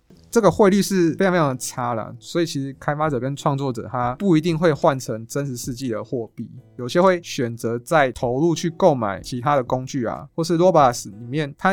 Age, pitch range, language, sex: 20-39, 120-155 Hz, Chinese, male